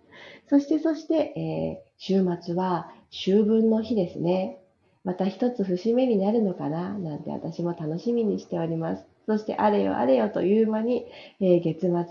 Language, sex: Japanese, female